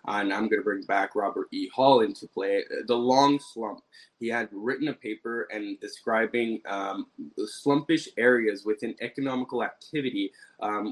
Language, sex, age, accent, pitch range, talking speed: English, male, 20-39, American, 105-140 Hz, 155 wpm